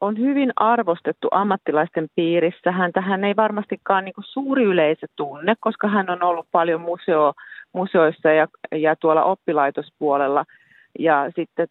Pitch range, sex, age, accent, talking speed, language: 140-170 Hz, female, 30-49, native, 135 wpm, Finnish